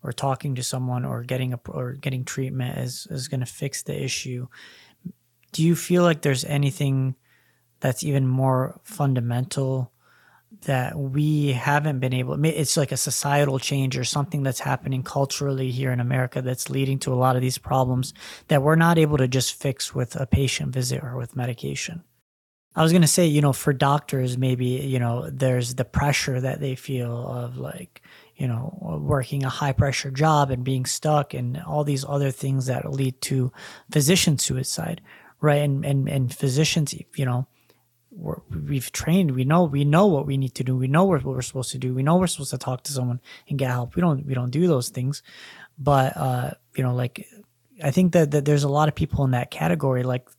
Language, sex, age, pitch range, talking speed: English, male, 30-49, 125-150 Hz, 200 wpm